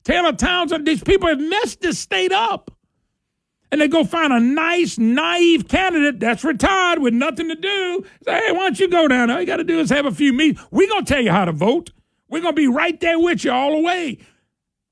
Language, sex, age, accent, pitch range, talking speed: English, male, 50-69, American, 265-360 Hz, 235 wpm